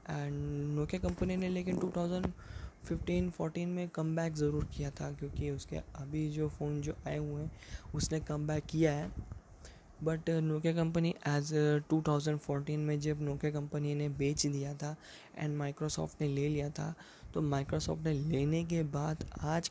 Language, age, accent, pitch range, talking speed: Hindi, 20-39, native, 150-175 Hz, 155 wpm